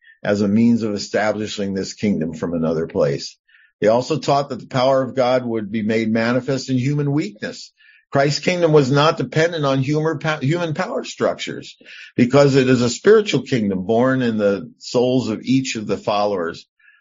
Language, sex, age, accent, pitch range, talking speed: English, male, 50-69, American, 105-135 Hz, 180 wpm